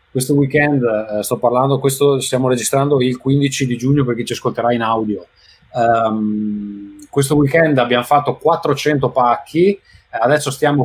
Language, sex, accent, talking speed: Italian, male, native, 145 wpm